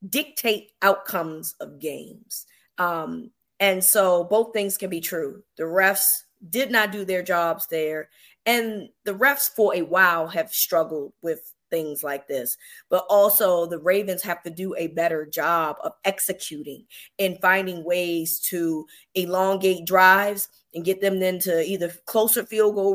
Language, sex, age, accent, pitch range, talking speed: English, female, 20-39, American, 185-230 Hz, 150 wpm